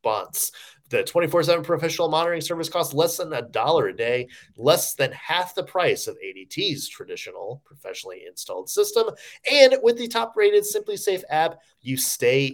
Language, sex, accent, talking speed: English, male, American, 170 wpm